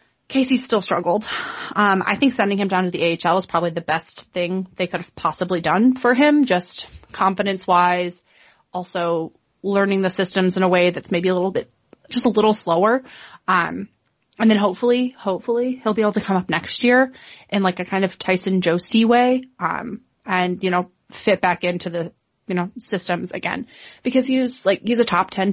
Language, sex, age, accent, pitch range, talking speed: English, female, 30-49, American, 180-225 Hz, 190 wpm